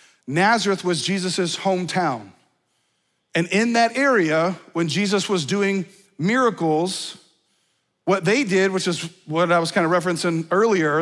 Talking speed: 135 wpm